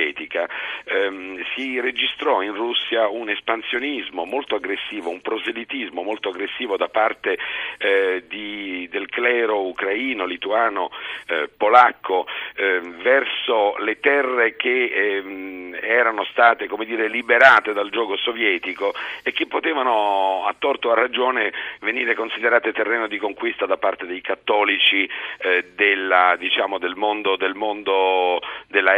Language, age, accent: Italian, 50-69, native